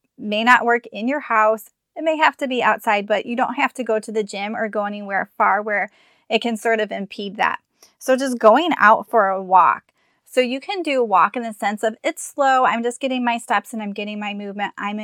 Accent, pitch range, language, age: American, 215-255 Hz, English, 20-39